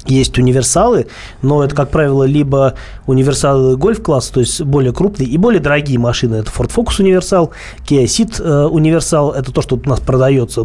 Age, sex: 20-39, male